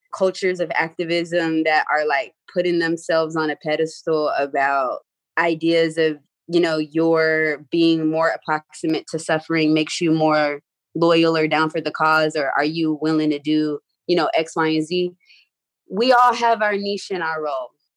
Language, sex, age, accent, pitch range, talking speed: English, female, 20-39, American, 155-185 Hz, 170 wpm